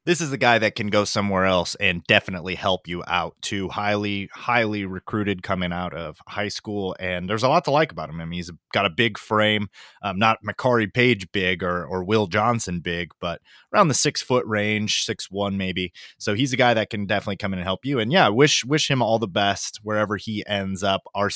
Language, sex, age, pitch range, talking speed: English, male, 30-49, 100-120 Hz, 230 wpm